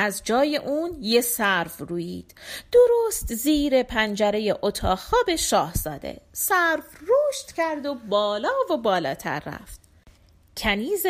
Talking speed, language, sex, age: 115 wpm, Persian, female, 30-49